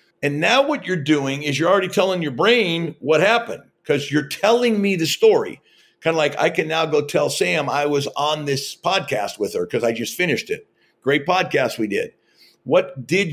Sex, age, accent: male, 50-69, American